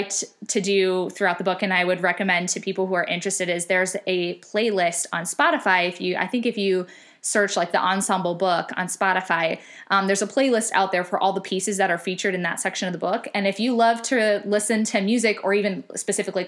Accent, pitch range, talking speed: American, 185-220 Hz, 230 wpm